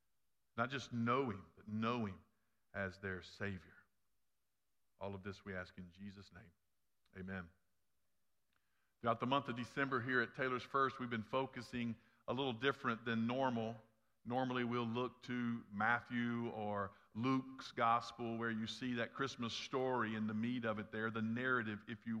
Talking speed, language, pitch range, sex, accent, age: 160 wpm, English, 110-140 Hz, male, American, 50-69